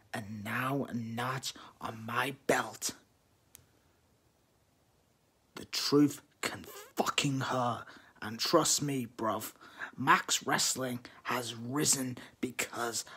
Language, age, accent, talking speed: English, 40-59, British, 95 wpm